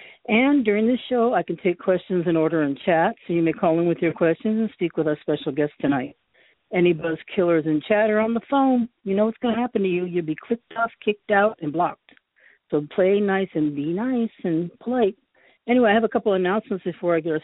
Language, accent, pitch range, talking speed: English, American, 165-215 Hz, 245 wpm